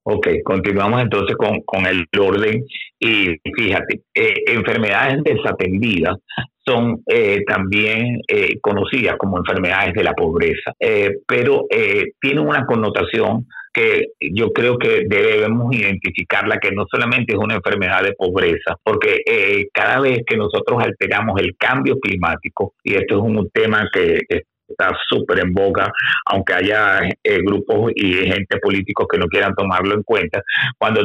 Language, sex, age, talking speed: Spanish, male, 50-69, 150 wpm